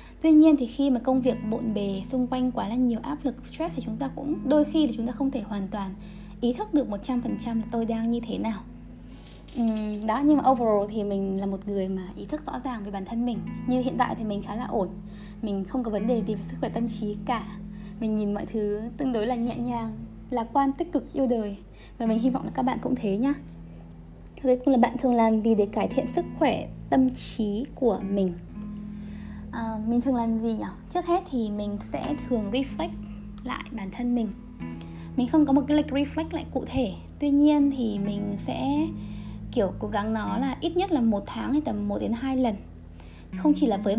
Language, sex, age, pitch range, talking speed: Vietnamese, female, 20-39, 205-260 Hz, 230 wpm